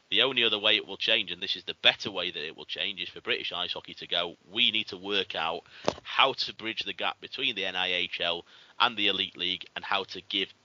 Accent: British